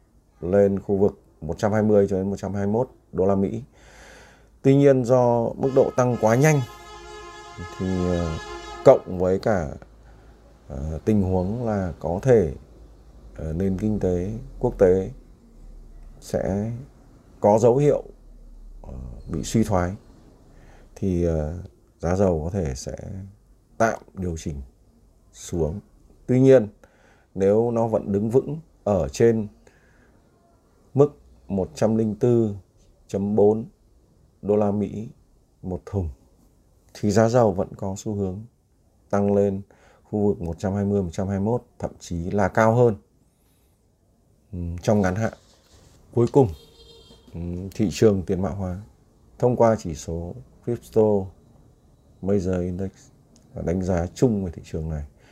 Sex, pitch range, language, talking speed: male, 85-110 Hz, Vietnamese, 125 wpm